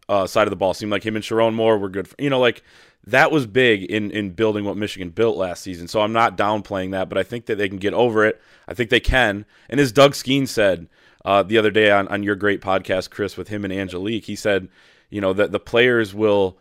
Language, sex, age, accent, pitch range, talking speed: English, male, 20-39, American, 100-115 Hz, 265 wpm